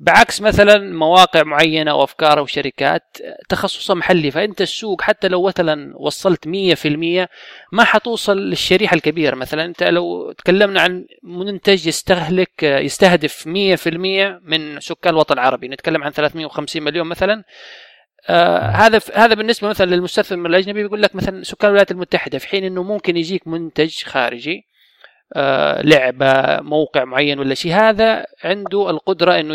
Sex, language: male, Arabic